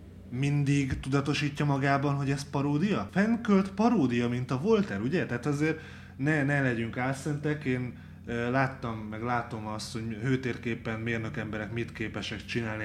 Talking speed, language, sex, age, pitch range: 140 wpm, Hungarian, male, 20-39, 110-140 Hz